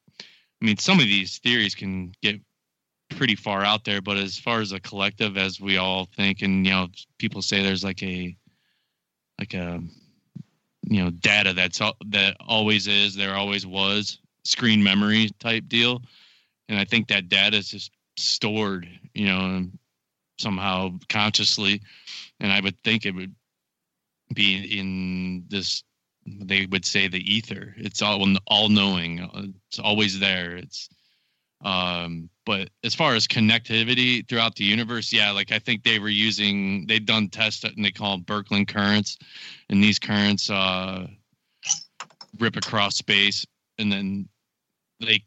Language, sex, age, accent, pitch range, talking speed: English, male, 20-39, American, 95-105 Hz, 150 wpm